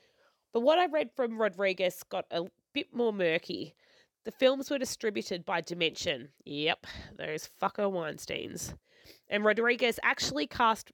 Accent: Australian